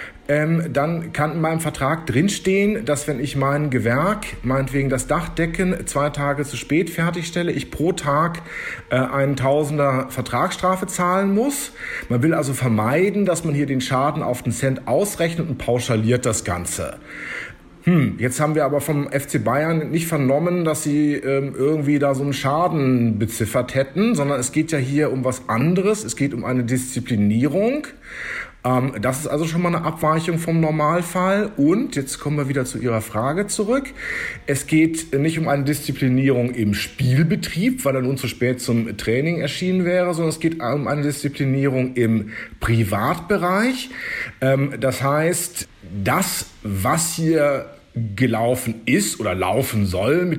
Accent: German